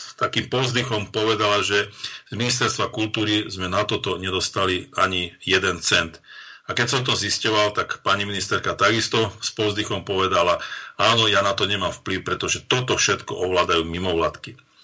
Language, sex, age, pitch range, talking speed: Slovak, male, 50-69, 100-115 Hz, 150 wpm